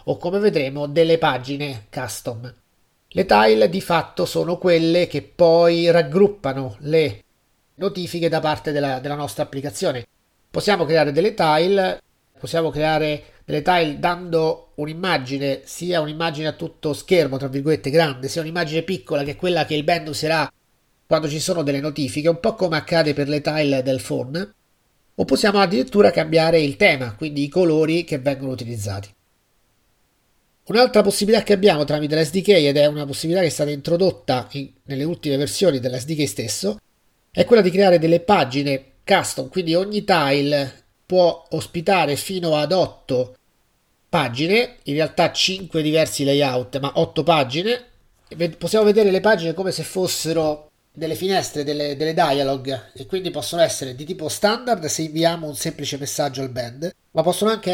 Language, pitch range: Italian, 140-175 Hz